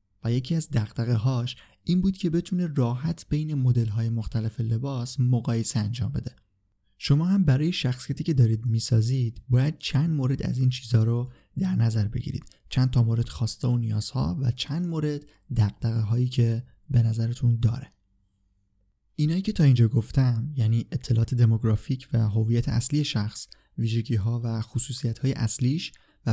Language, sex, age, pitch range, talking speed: Persian, male, 30-49, 115-140 Hz, 150 wpm